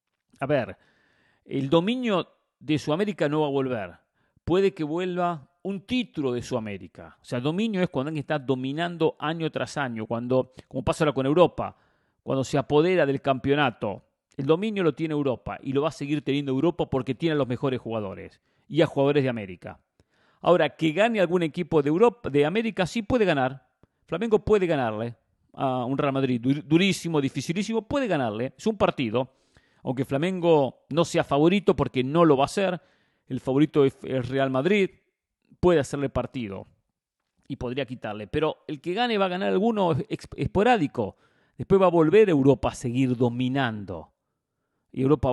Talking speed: 175 wpm